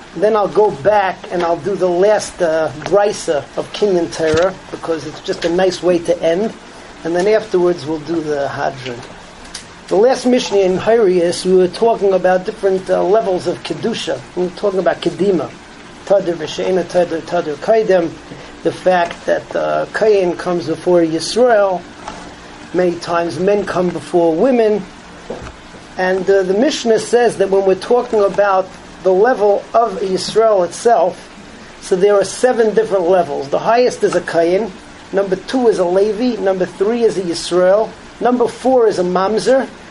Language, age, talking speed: English, 40-59, 165 wpm